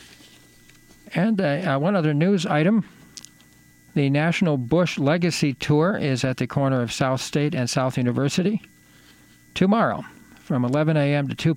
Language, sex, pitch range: English, male, 125-160 Hz